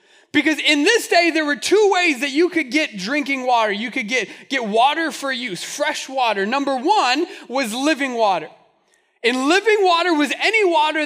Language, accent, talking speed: English, American, 185 wpm